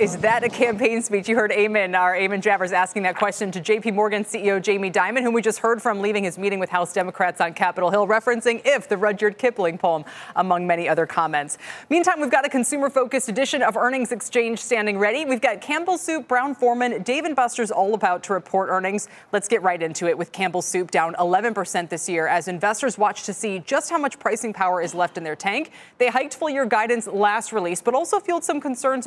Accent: American